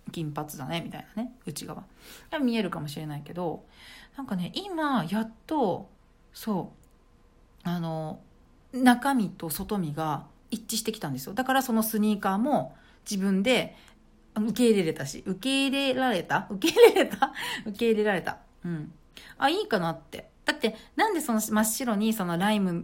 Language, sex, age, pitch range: Japanese, female, 40-59, 170-255 Hz